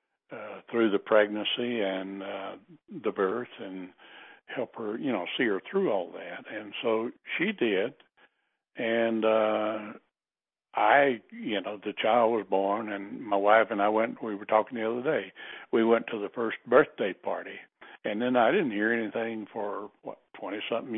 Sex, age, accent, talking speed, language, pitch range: male, 60-79, American, 170 wpm, English, 100-115 Hz